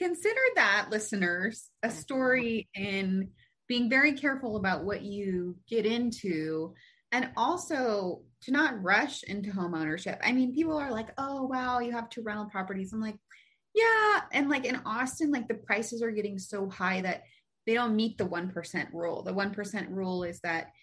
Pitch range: 185-240 Hz